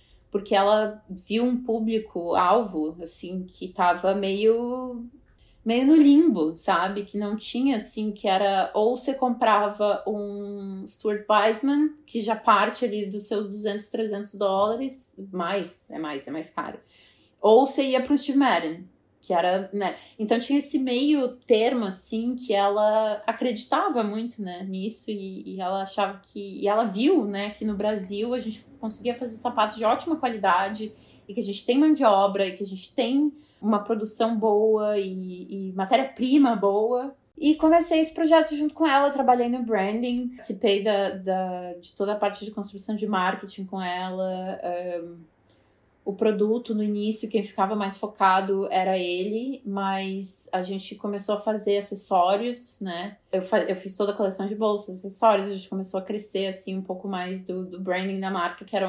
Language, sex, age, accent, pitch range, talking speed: Portuguese, female, 20-39, Brazilian, 195-235 Hz, 175 wpm